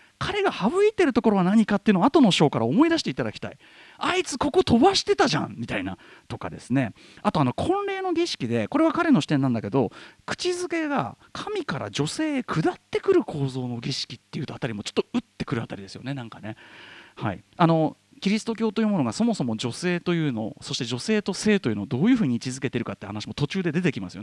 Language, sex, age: Japanese, male, 40-59